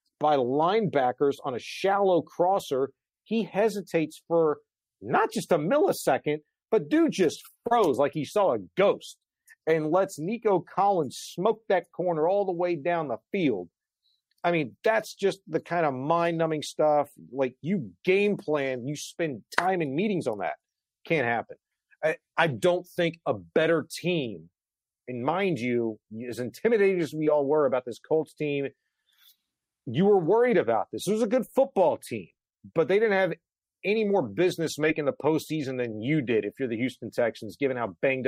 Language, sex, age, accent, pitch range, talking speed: English, male, 40-59, American, 135-200 Hz, 170 wpm